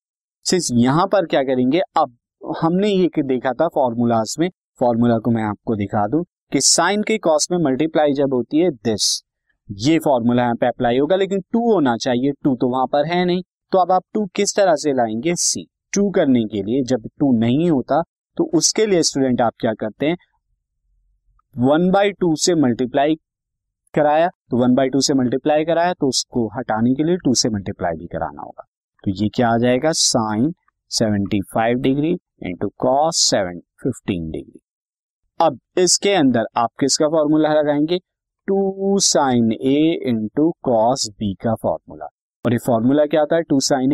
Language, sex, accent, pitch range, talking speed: Hindi, male, native, 115-165 Hz, 175 wpm